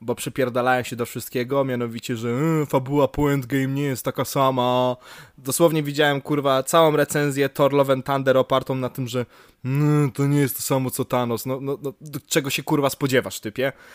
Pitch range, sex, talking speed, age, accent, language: 125-155 Hz, male, 175 wpm, 20-39, native, Polish